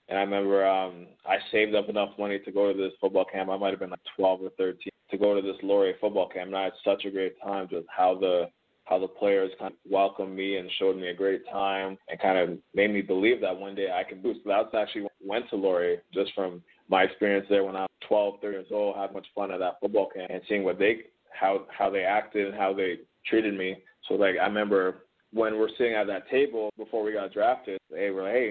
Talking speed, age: 255 wpm, 20-39